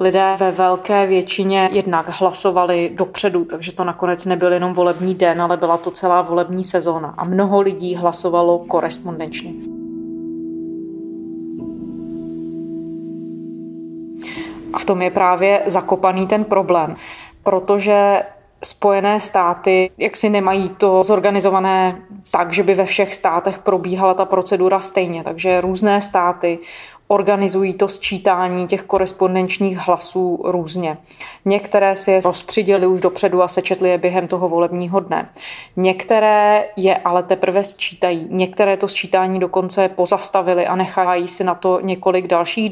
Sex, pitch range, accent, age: female, 175-195 Hz, native, 20-39